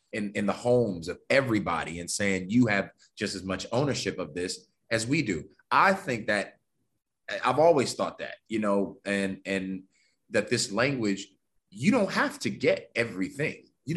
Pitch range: 95-120 Hz